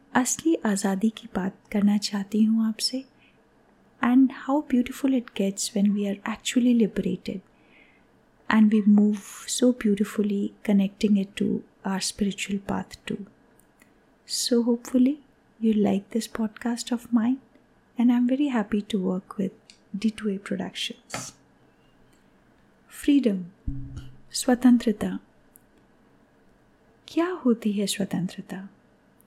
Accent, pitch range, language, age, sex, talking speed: native, 200-245 Hz, Hindi, 30-49, female, 110 wpm